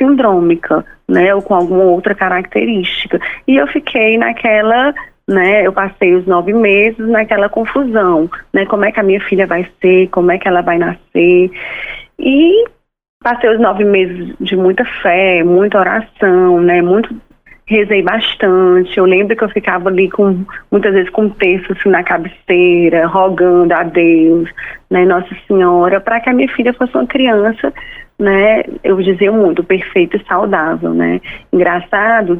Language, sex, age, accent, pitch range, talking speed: Portuguese, female, 20-39, Brazilian, 180-225 Hz, 155 wpm